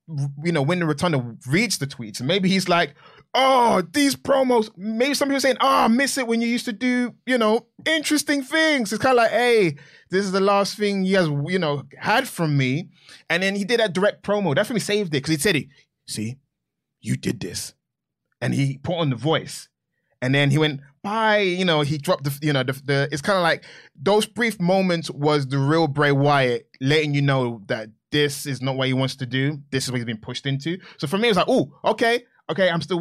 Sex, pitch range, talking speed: male, 135-190 Hz, 235 wpm